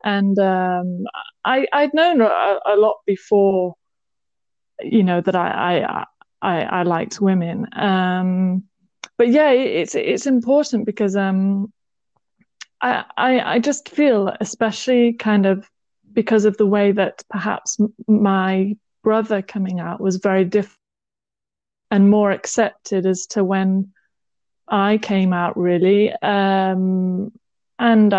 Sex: female